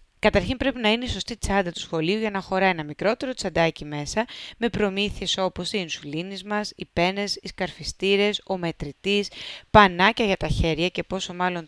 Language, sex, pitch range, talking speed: Greek, female, 165-210 Hz, 180 wpm